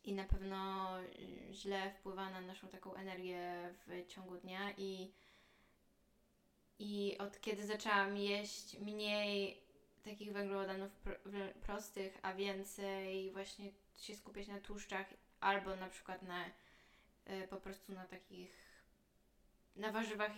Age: 20-39